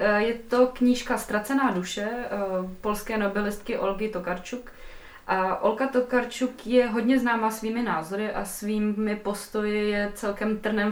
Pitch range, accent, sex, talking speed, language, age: 185-220 Hz, native, female, 125 wpm, Czech, 20-39